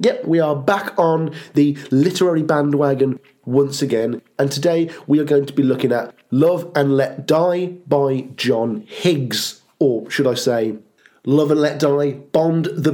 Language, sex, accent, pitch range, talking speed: English, male, British, 135-170 Hz, 165 wpm